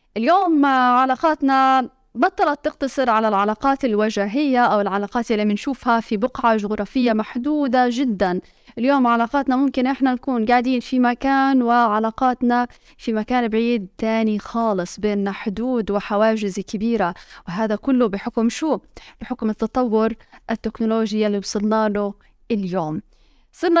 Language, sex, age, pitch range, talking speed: Arabic, female, 20-39, 220-270 Hz, 115 wpm